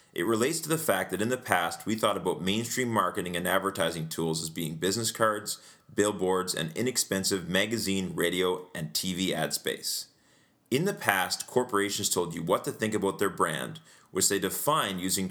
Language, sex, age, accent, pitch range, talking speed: English, male, 30-49, American, 90-120 Hz, 180 wpm